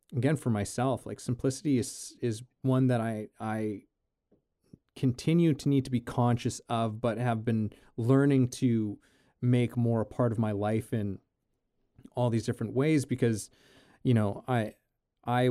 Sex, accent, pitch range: male, American, 105-130 Hz